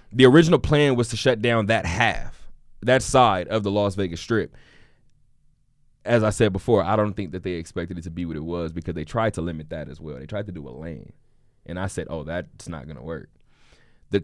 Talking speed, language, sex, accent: 230 wpm, English, male, American